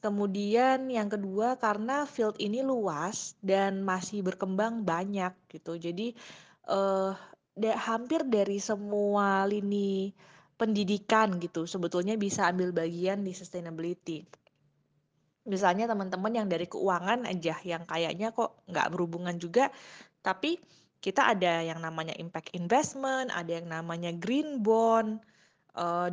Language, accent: Indonesian, native